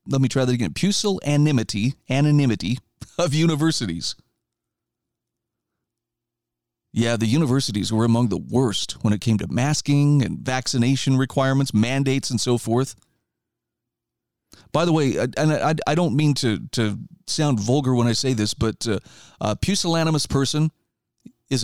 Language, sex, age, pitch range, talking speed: English, male, 40-59, 115-150 Hz, 135 wpm